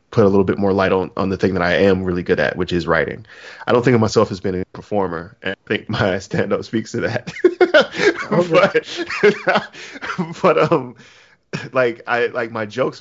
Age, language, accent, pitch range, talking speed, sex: 20-39, English, American, 95-110 Hz, 205 wpm, male